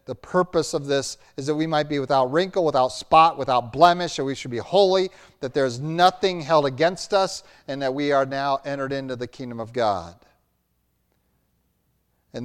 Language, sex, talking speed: English, male, 185 wpm